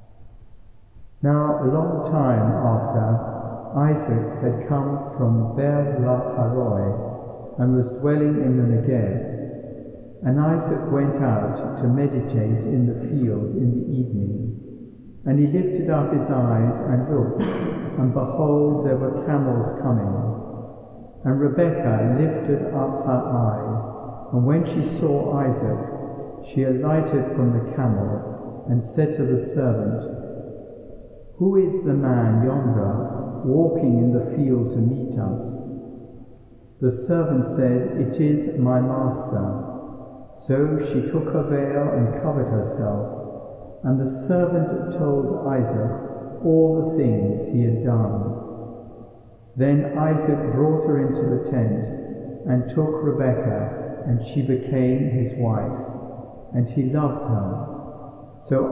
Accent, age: British, 60-79